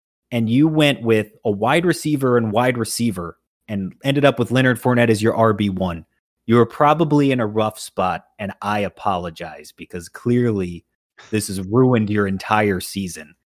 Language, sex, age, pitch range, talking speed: English, male, 30-49, 115-190 Hz, 165 wpm